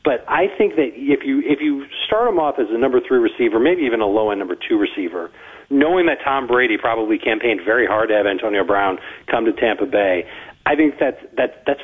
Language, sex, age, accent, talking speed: English, male, 40-59, American, 225 wpm